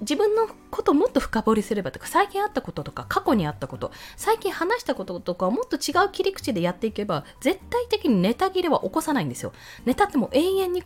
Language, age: Japanese, 20-39